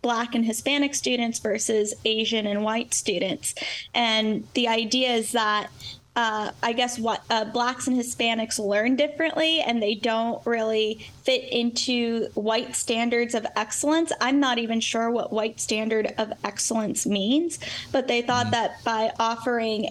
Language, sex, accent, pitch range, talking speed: English, female, American, 215-250 Hz, 150 wpm